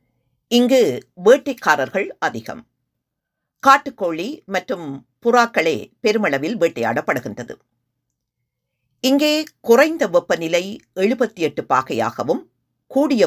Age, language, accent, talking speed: 50-69, Tamil, native, 70 wpm